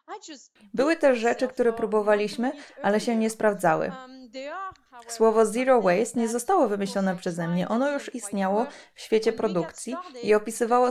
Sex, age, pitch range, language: female, 20-39, 205-255 Hz, Polish